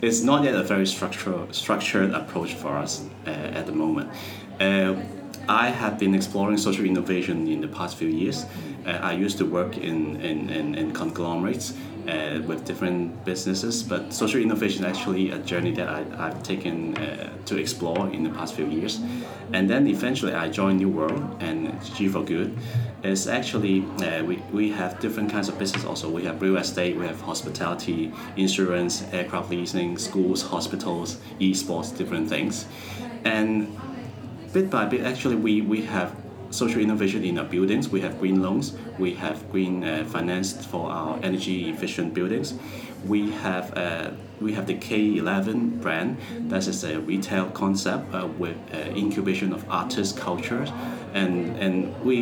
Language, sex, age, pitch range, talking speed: English, male, 30-49, 90-110 Hz, 160 wpm